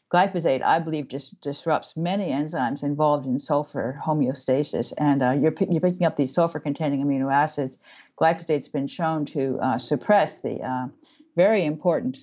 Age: 50-69